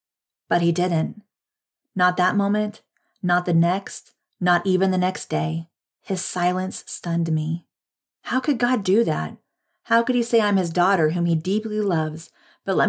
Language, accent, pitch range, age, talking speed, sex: English, American, 165-200 Hz, 40-59, 170 wpm, female